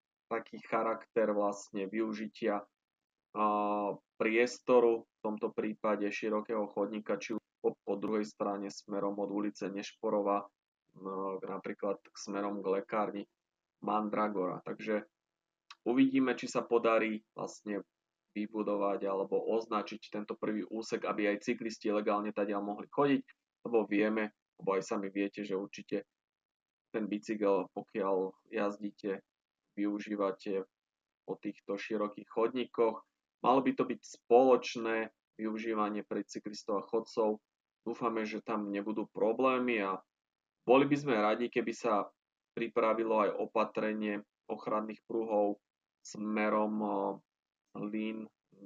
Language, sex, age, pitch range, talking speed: Slovak, male, 20-39, 100-110 Hz, 115 wpm